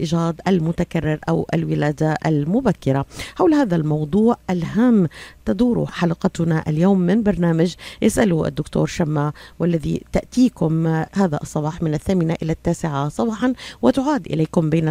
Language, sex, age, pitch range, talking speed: Arabic, female, 50-69, 160-200 Hz, 115 wpm